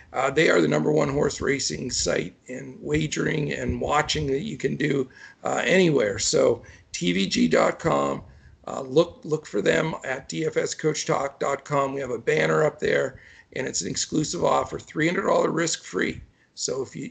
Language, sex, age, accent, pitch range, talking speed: English, male, 50-69, American, 140-200 Hz, 155 wpm